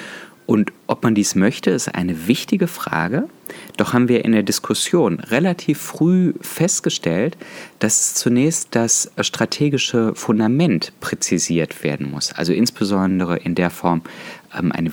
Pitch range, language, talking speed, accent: 95-135 Hz, German, 130 wpm, German